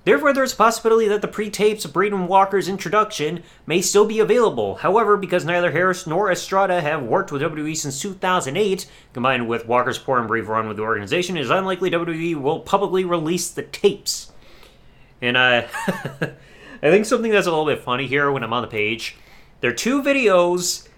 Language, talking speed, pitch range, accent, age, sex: English, 190 wpm, 140-205 Hz, American, 30-49, male